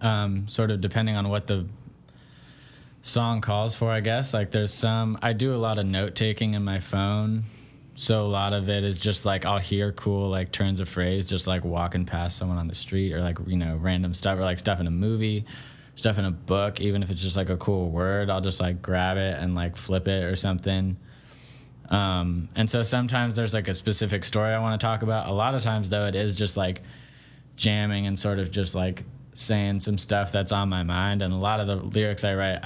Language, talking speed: English, 230 wpm